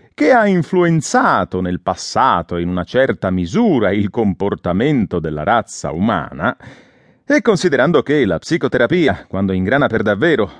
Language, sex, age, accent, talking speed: English, male, 30-49, Italian, 130 wpm